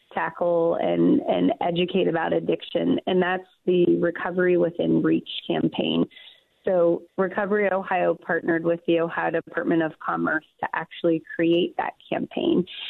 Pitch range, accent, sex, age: 170-200 Hz, American, female, 30-49